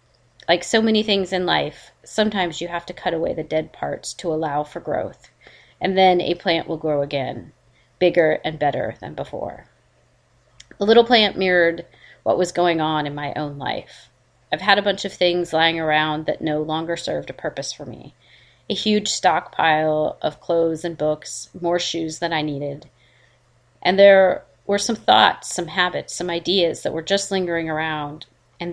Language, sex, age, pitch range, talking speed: English, female, 30-49, 155-185 Hz, 180 wpm